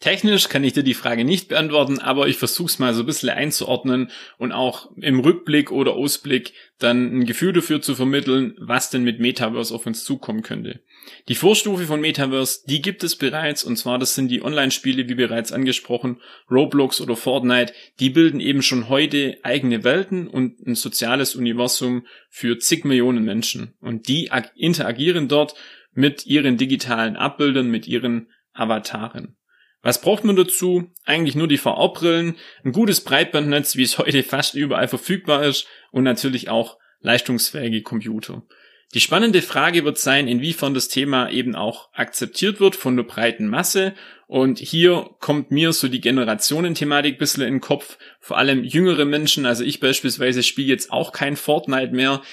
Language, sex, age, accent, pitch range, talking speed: German, male, 30-49, German, 125-155 Hz, 170 wpm